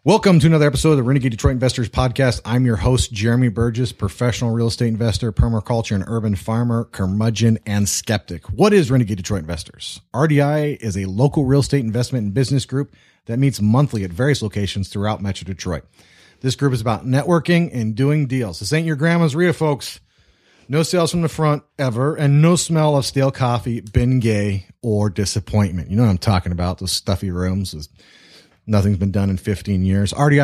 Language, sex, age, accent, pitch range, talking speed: English, male, 30-49, American, 100-135 Hz, 190 wpm